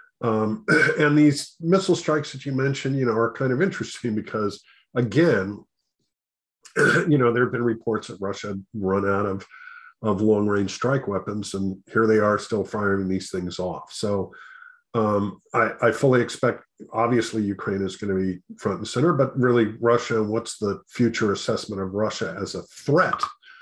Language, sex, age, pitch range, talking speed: English, male, 50-69, 100-125 Hz, 180 wpm